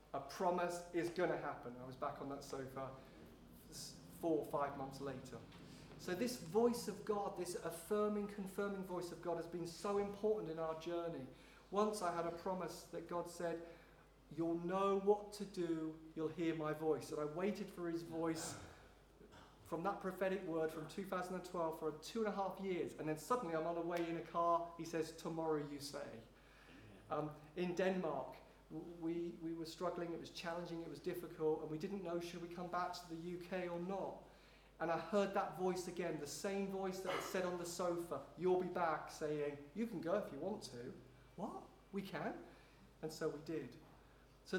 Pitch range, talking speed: 155-185 Hz, 195 wpm